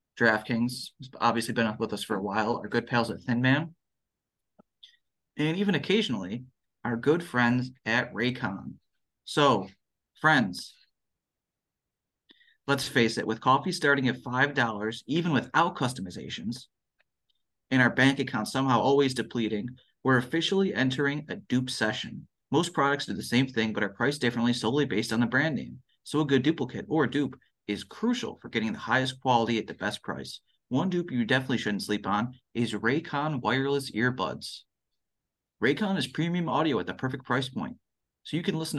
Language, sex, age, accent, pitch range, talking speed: English, male, 30-49, American, 115-145 Hz, 165 wpm